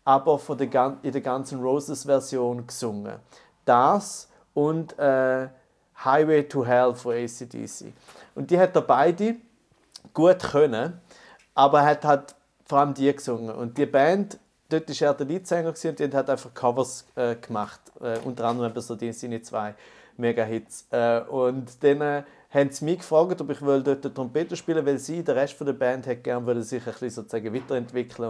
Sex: male